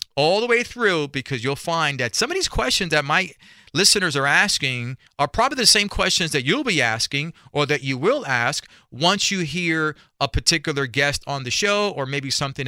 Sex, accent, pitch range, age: male, American, 135-195 Hz, 40-59